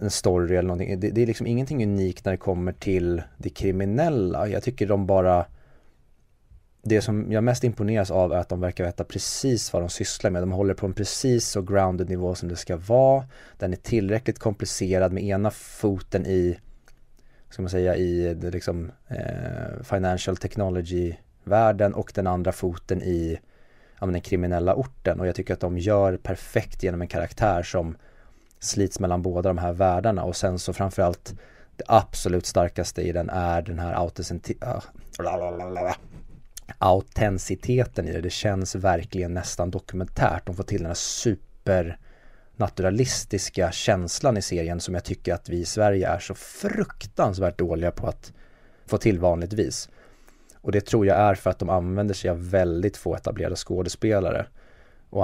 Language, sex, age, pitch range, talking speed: Swedish, male, 20-39, 90-105 Hz, 170 wpm